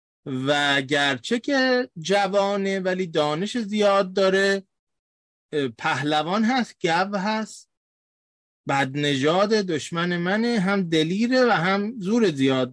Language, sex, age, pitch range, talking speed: Persian, male, 30-49, 135-200 Hz, 105 wpm